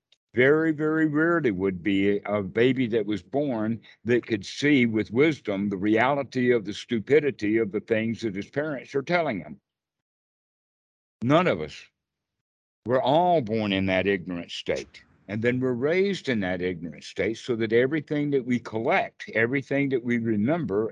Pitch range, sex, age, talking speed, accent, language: 100-135 Hz, male, 60-79, 165 wpm, American, English